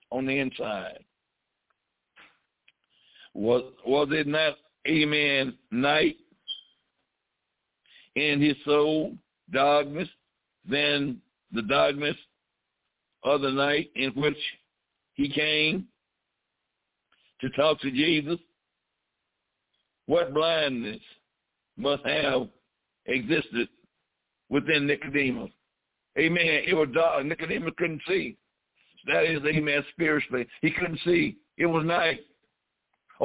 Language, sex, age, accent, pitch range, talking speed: English, male, 60-79, American, 140-175 Hz, 95 wpm